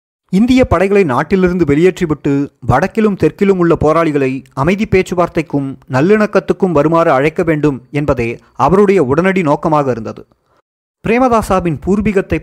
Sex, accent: male, native